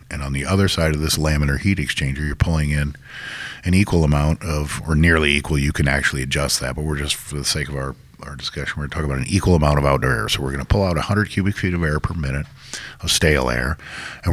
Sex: male